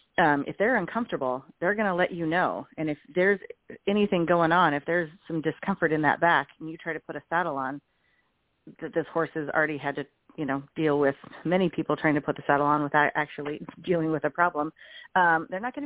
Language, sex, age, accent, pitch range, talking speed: English, female, 40-59, American, 150-190 Hz, 225 wpm